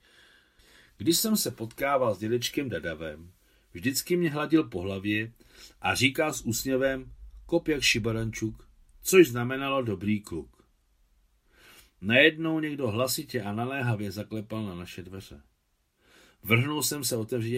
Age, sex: 50-69, male